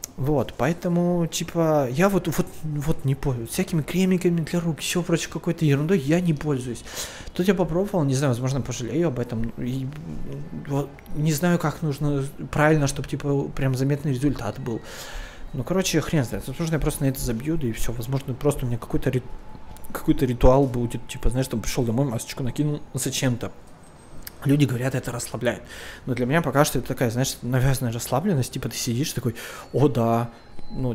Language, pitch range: Russian, 125-160 Hz